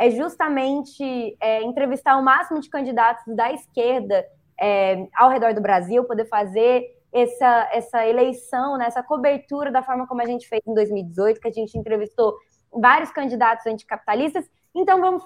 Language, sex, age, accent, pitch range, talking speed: Portuguese, female, 20-39, Brazilian, 230-300 Hz, 150 wpm